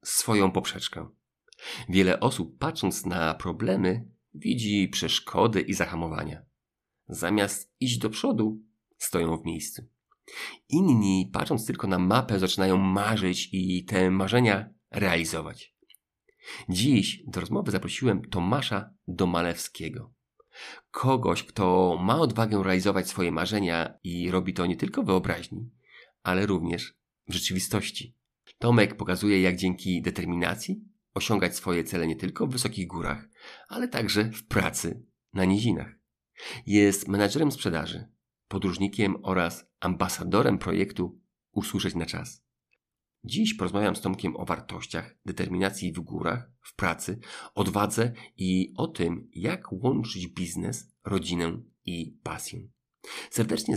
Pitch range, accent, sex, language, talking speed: 90-110 Hz, native, male, Polish, 115 wpm